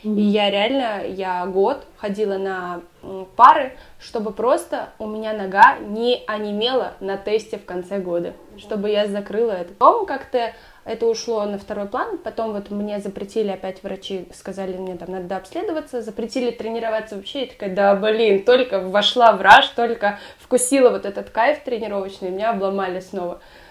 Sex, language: female, Russian